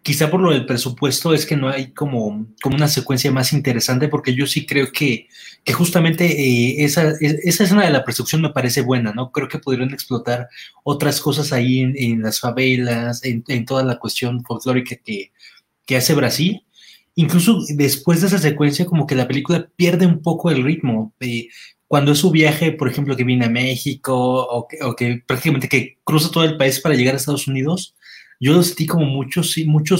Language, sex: Spanish, male